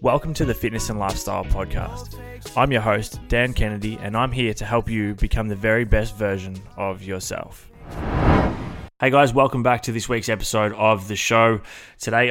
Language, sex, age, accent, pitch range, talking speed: English, male, 20-39, Australian, 100-110 Hz, 180 wpm